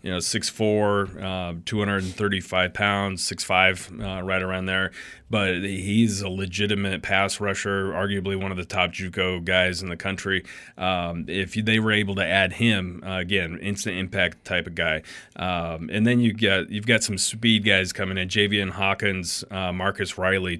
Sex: male